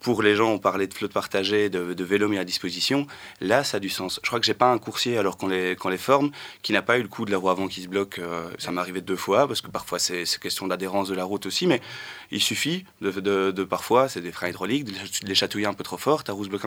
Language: French